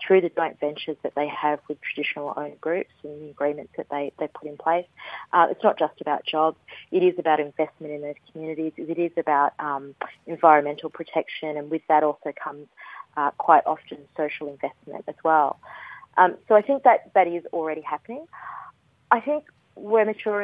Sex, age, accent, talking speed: female, 30-49, Australian, 185 wpm